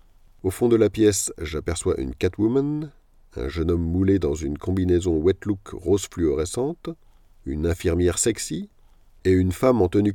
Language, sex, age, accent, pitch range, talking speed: French, male, 50-69, French, 90-115 Hz, 160 wpm